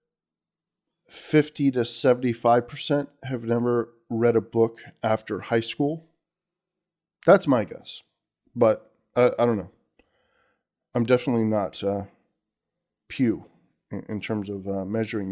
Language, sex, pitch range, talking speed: English, male, 110-140 Hz, 120 wpm